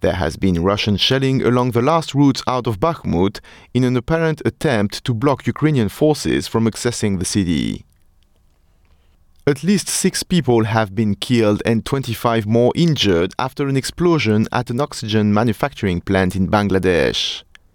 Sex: male